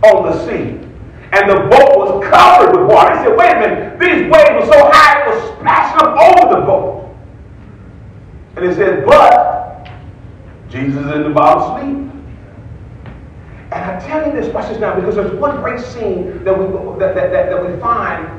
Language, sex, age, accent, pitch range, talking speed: English, male, 40-59, American, 200-320 Hz, 185 wpm